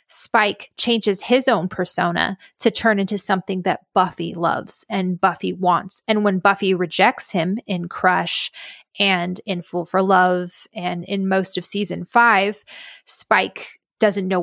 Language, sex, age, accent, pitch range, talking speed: English, female, 20-39, American, 185-220 Hz, 150 wpm